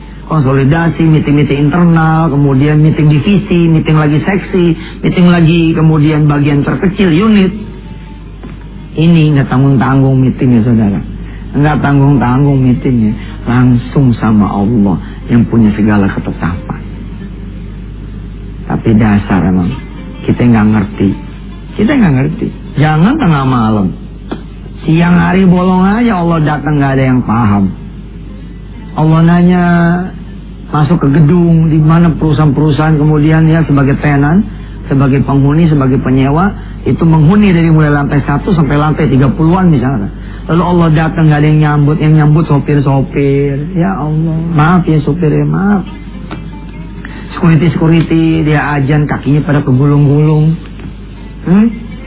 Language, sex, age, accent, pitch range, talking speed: English, male, 40-59, Indonesian, 135-165 Hz, 120 wpm